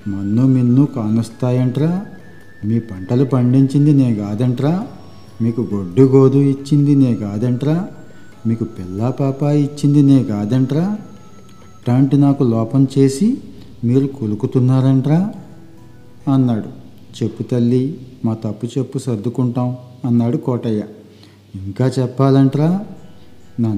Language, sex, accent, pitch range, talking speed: Telugu, male, native, 110-135 Hz, 95 wpm